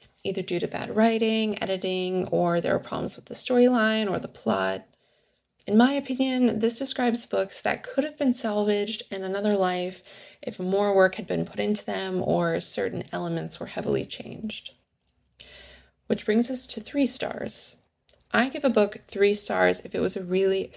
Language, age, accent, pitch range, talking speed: English, 20-39, American, 185-230 Hz, 175 wpm